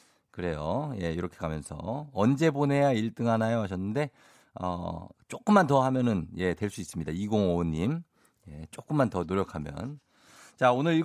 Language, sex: Korean, male